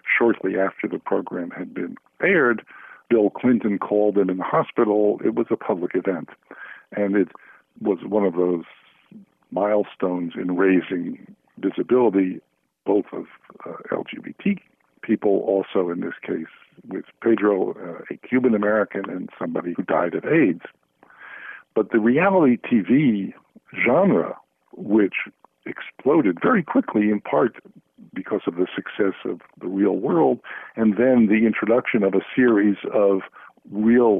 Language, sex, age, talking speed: English, male, 60-79, 135 wpm